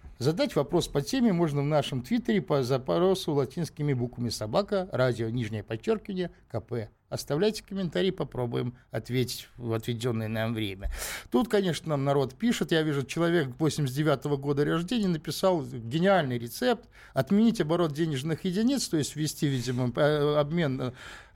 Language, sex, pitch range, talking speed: Russian, male, 140-185 Hz, 135 wpm